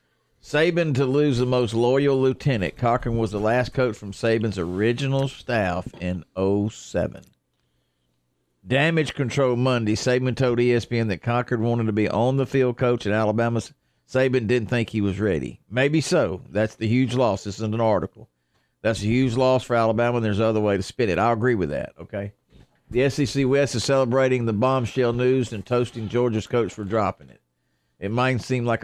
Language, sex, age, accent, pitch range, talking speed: English, male, 50-69, American, 95-125 Hz, 185 wpm